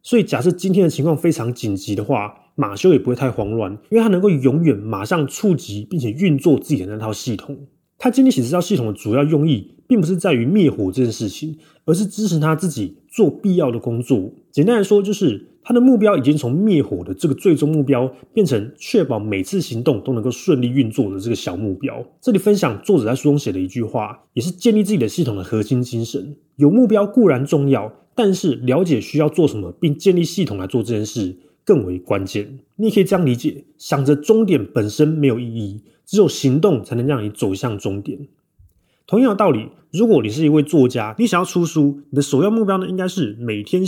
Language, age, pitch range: Chinese, 30-49, 115-185 Hz